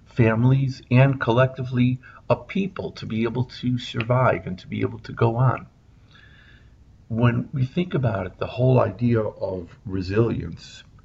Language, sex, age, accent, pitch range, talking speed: English, male, 50-69, American, 110-130 Hz, 145 wpm